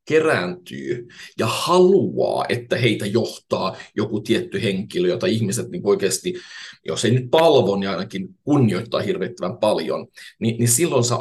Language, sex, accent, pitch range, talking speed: Finnish, male, native, 115-135 Hz, 140 wpm